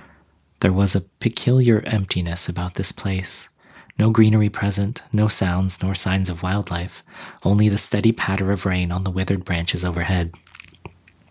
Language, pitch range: English, 90-105 Hz